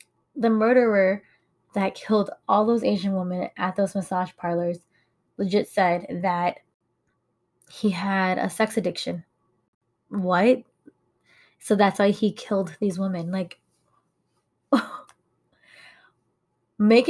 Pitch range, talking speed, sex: 185-220 Hz, 105 wpm, female